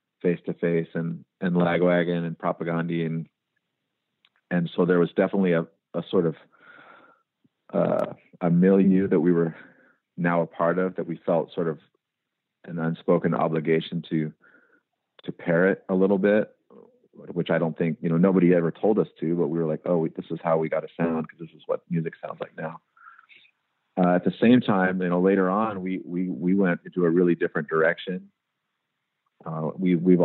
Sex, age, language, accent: male, 40-59, English, American